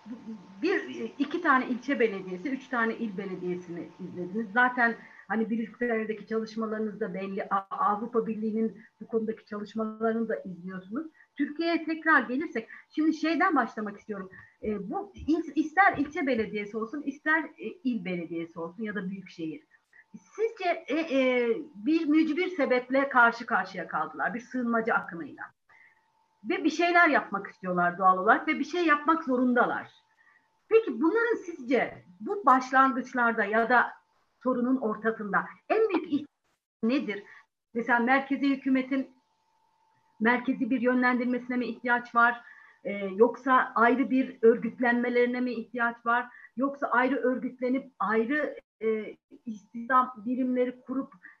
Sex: female